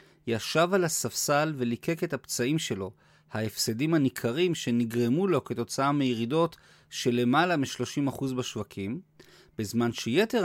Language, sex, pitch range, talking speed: Hebrew, male, 120-165 Hz, 110 wpm